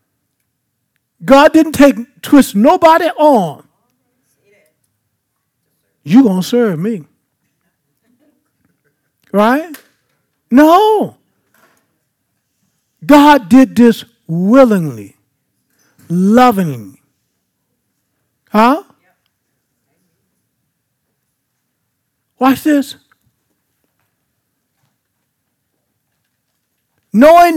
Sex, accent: male, American